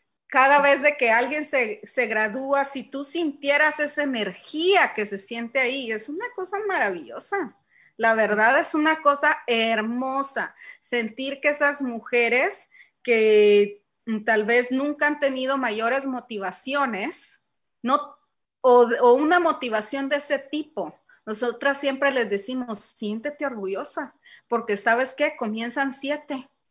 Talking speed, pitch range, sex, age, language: 130 wpm, 225-280 Hz, female, 30-49, Spanish